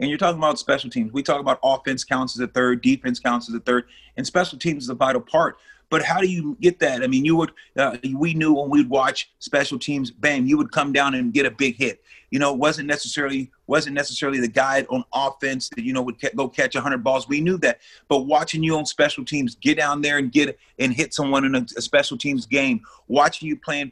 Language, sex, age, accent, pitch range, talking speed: English, male, 30-49, American, 145-195 Hz, 255 wpm